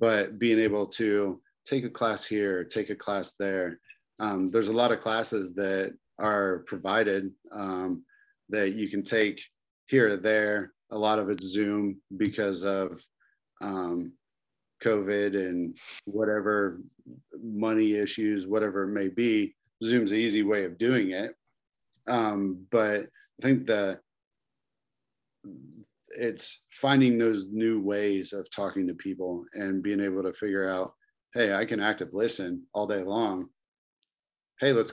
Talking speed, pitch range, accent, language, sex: 145 wpm, 95-115 Hz, American, English, male